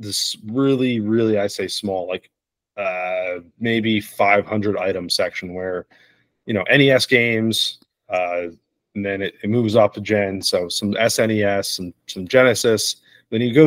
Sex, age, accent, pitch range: male, 30-49, American, 100-120 Hz